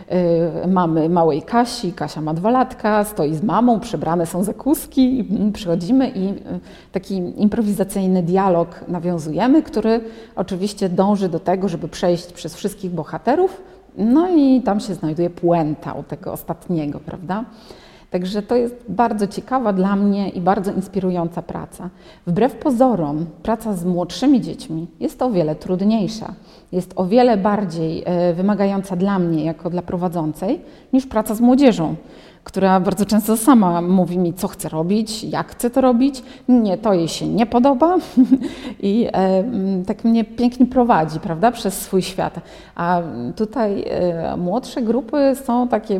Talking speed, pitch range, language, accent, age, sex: 145 wpm, 175-230 Hz, Romanian, Polish, 30-49, female